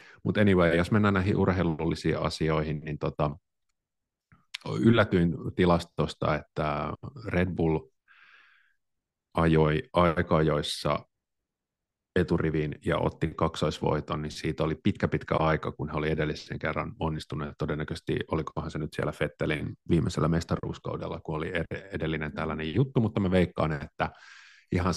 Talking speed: 120 wpm